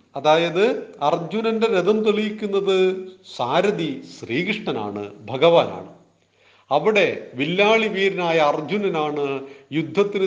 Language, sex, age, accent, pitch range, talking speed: Malayalam, male, 40-59, native, 140-185 Hz, 70 wpm